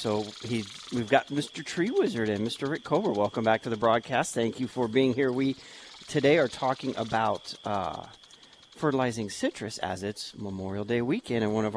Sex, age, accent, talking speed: male, 40-59, American, 185 wpm